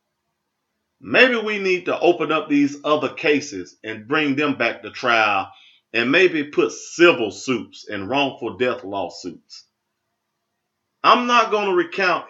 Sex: male